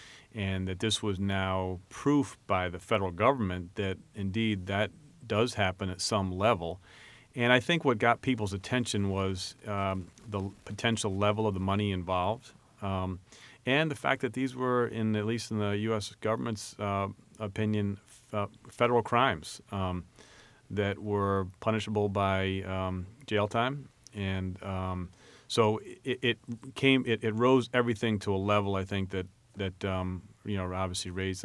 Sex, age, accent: male, 40-59, American